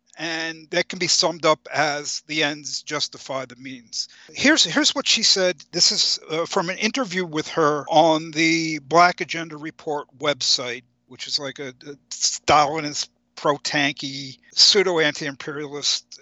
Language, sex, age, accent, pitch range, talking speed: English, male, 50-69, American, 155-190 Hz, 145 wpm